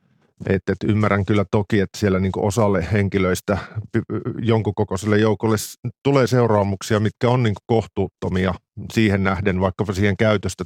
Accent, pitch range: native, 95-120 Hz